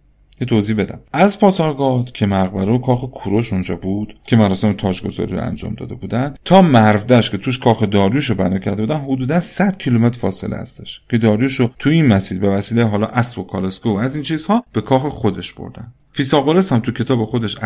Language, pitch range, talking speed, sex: Persian, 110-145 Hz, 195 wpm, male